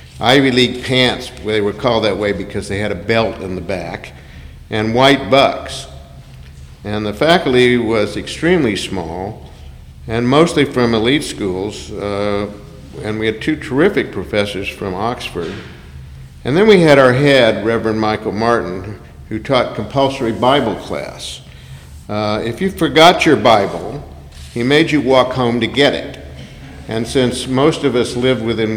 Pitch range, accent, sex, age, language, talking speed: 100-125 Hz, American, male, 50-69, English, 155 wpm